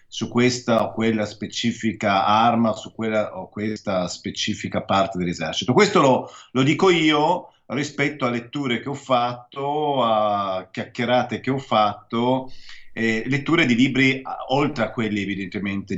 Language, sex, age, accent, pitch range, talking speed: Italian, male, 40-59, native, 105-130 Hz, 145 wpm